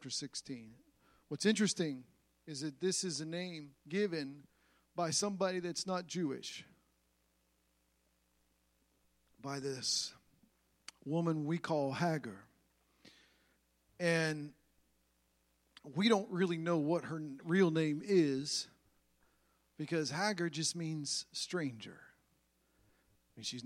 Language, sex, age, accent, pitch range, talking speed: English, male, 50-69, American, 120-180 Hz, 95 wpm